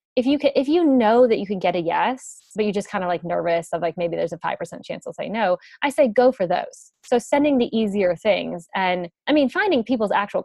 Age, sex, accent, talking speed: 20-39, female, American, 260 wpm